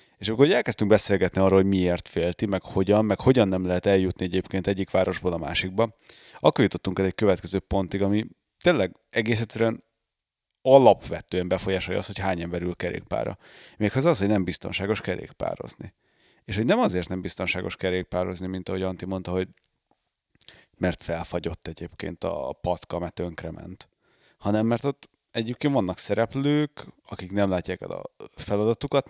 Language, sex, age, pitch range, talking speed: Hungarian, male, 30-49, 90-105 Hz, 160 wpm